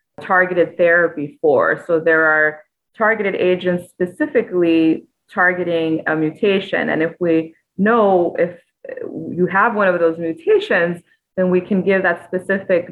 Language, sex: English, female